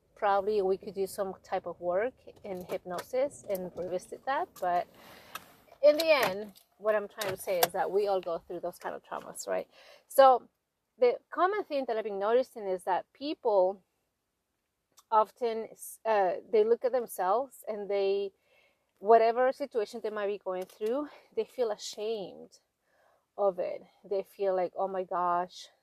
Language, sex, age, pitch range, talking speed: English, female, 30-49, 185-230 Hz, 165 wpm